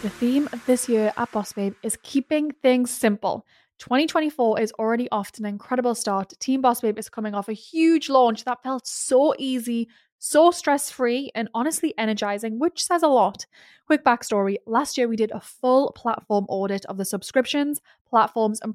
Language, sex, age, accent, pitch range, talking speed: English, female, 10-29, British, 210-255 Hz, 180 wpm